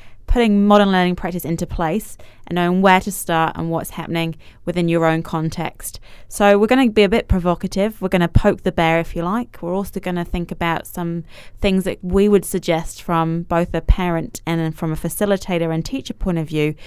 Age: 20-39